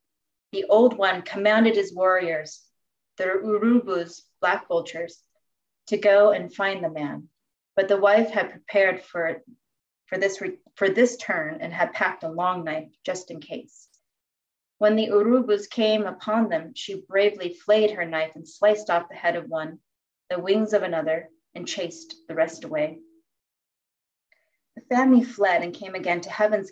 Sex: female